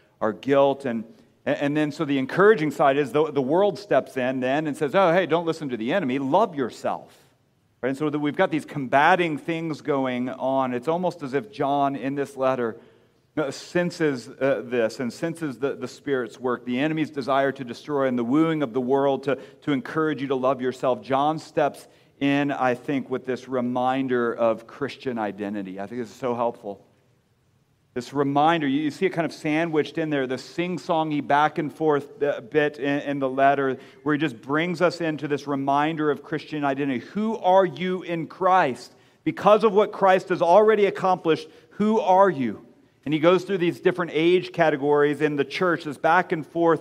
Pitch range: 135-170 Hz